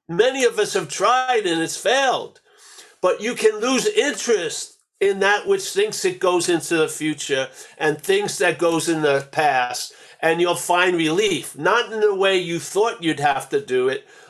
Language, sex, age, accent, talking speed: English, male, 50-69, American, 185 wpm